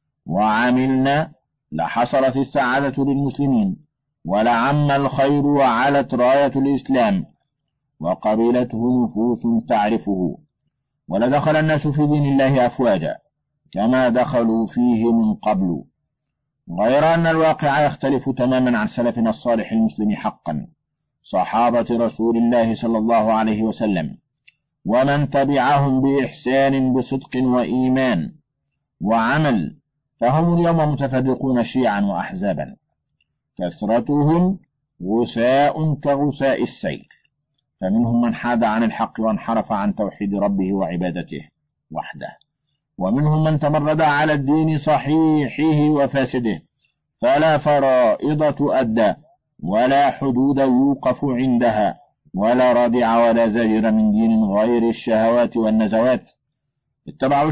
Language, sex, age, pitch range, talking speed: Arabic, male, 50-69, 115-145 Hz, 95 wpm